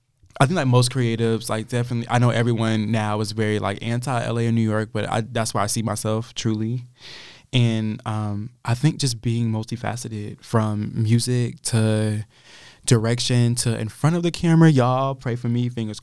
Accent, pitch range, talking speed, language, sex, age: American, 110-125 Hz, 185 wpm, English, male, 20-39